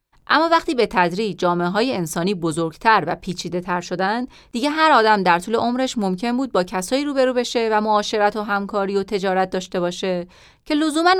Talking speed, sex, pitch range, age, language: 170 wpm, female, 175-240 Hz, 30-49, Persian